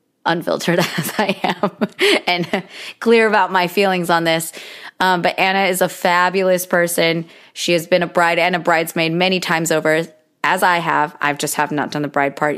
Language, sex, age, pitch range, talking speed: English, female, 20-39, 165-195 Hz, 190 wpm